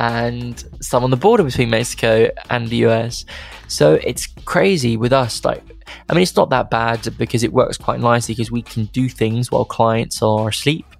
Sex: male